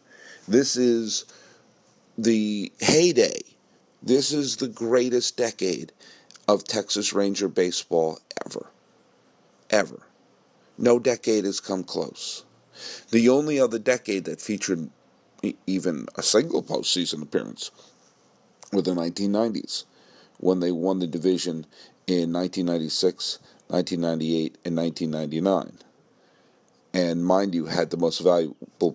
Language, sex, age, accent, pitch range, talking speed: English, male, 50-69, American, 85-110 Hz, 105 wpm